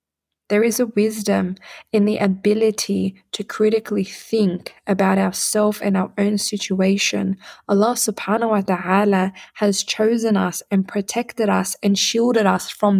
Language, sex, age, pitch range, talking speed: English, female, 20-39, 195-220 Hz, 140 wpm